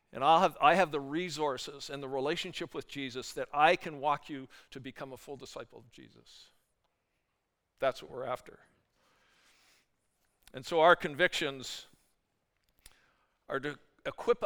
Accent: American